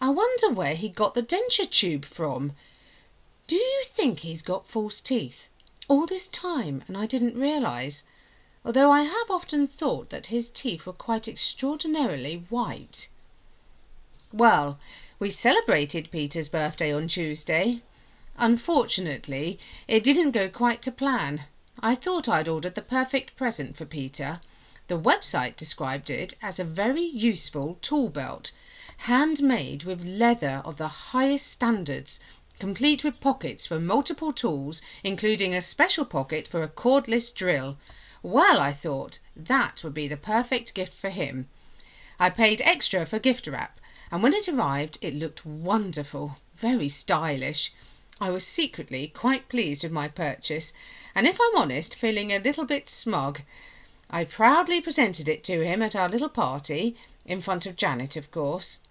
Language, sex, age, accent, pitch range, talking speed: English, female, 40-59, British, 155-260 Hz, 150 wpm